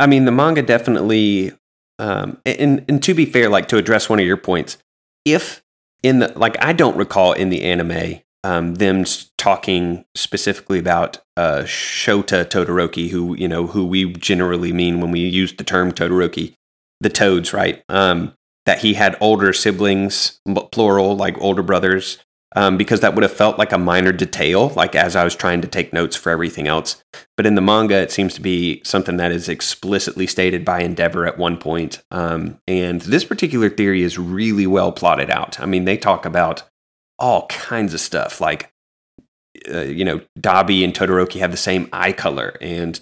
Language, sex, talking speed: English, male, 185 wpm